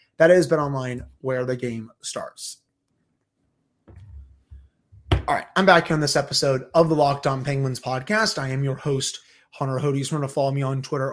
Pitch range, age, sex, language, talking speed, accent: 130-155 Hz, 30-49, male, English, 185 wpm, American